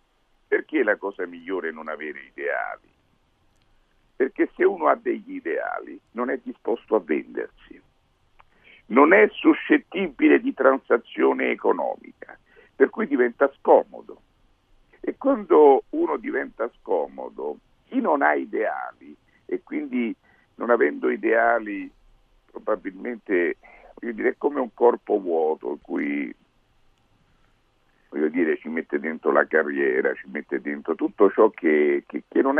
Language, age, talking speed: Italian, 60-79, 125 wpm